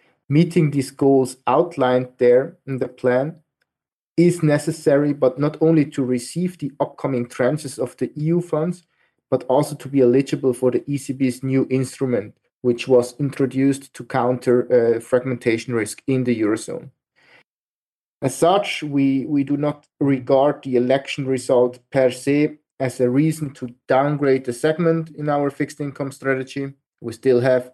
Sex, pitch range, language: male, 125-150 Hz, English